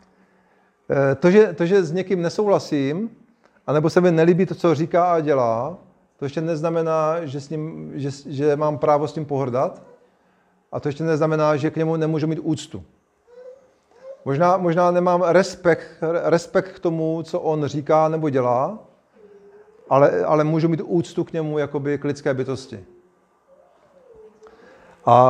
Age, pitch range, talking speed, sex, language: 40-59, 140-175 Hz, 150 wpm, male, Czech